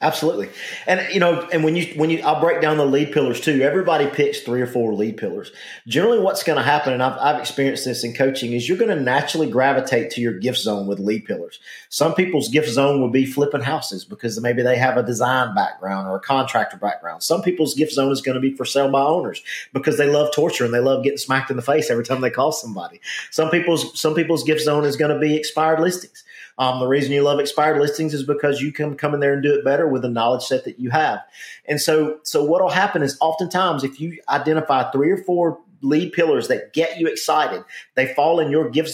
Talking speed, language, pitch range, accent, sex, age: 245 wpm, English, 130-155 Hz, American, male, 40-59